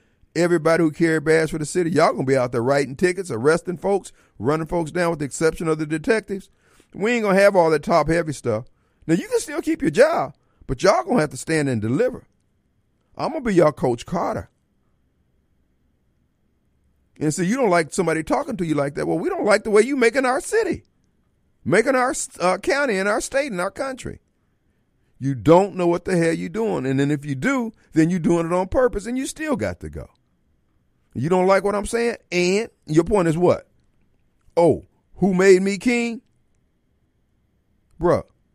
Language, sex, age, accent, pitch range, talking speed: English, male, 50-69, American, 130-195 Hz, 205 wpm